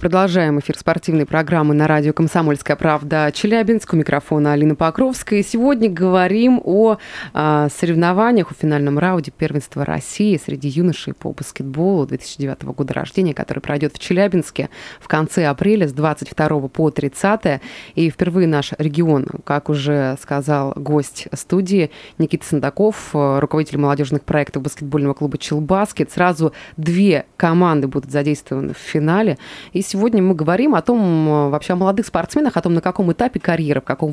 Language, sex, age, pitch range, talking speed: Russian, female, 20-39, 145-190 Hz, 145 wpm